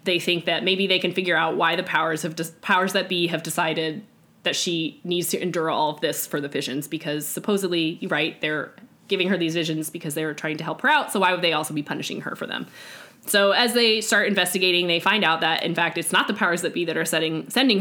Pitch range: 165-205 Hz